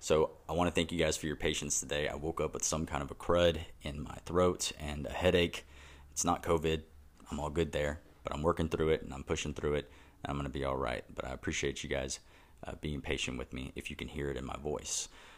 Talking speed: 265 wpm